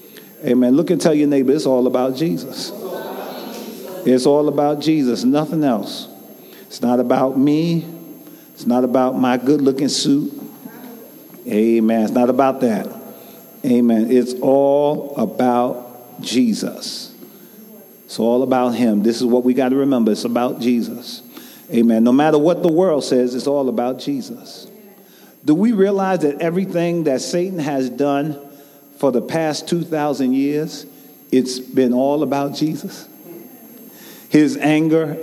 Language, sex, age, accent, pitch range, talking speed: English, male, 40-59, American, 135-175 Hz, 140 wpm